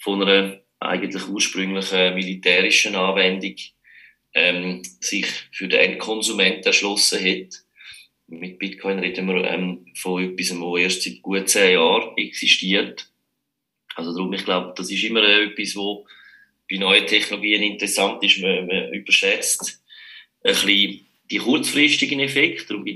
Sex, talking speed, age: male, 135 wpm, 30-49